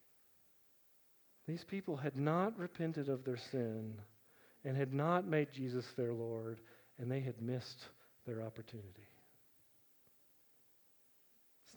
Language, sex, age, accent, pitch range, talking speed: English, male, 40-59, American, 125-175 Hz, 110 wpm